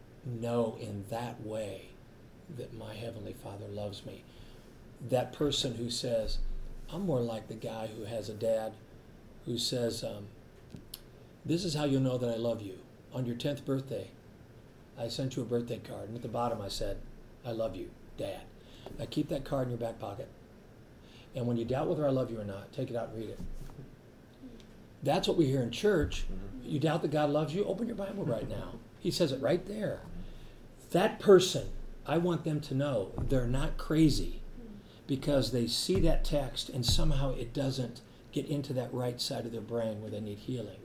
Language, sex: English, male